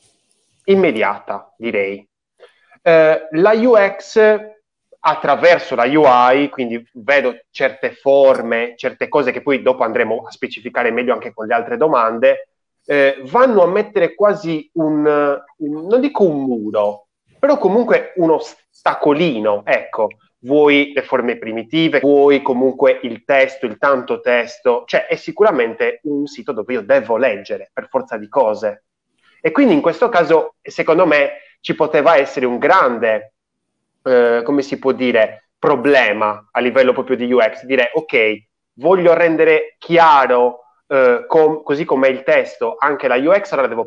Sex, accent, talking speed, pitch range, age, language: male, native, 145 wpm, 125-195 Hz, 30-49, Italian